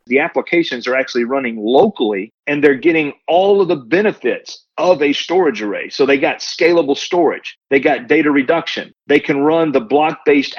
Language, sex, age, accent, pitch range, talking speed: English, male, 40-59, American, 120-150 Hz, 175 wpm